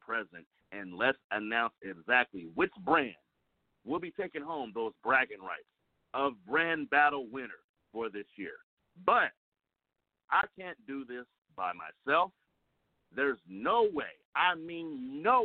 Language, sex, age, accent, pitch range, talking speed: English, male, 50-69, American, 110-145 Hz, 130 wpm